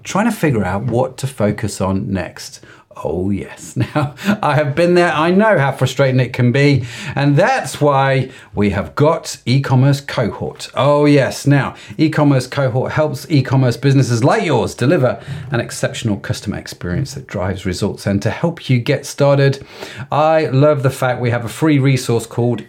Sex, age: male, 40-59